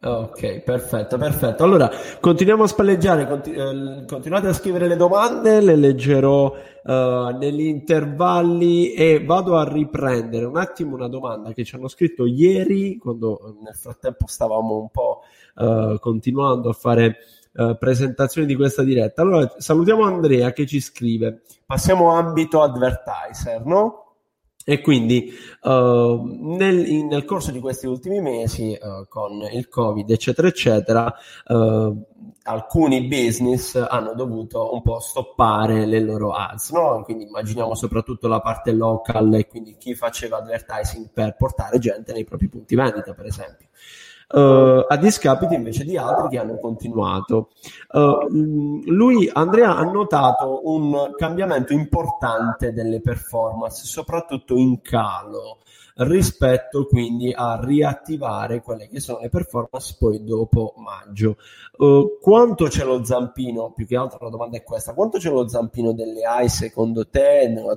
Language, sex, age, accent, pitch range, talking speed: Italian, male, 20-39, native, 115-150 Hz, 135 wpm